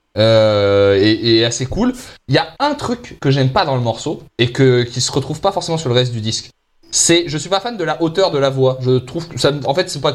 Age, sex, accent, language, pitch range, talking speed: 20-39, male, French, French, 125-180 Hz, 280 wpm